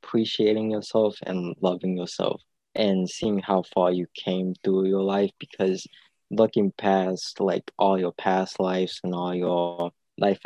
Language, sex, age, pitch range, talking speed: English, male, 20-39, 90-100 Hz, 150 wpm